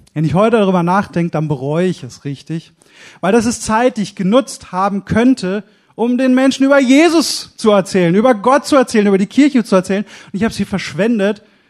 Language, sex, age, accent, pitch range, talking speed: German, male, 30-49, German, 180-235 Hz, 205 wpm